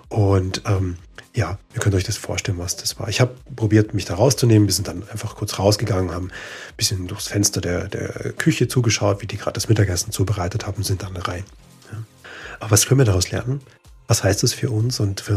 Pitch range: 100-115 Hz